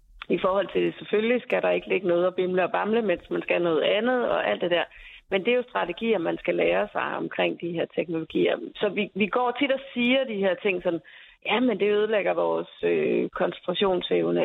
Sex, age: female, 30-49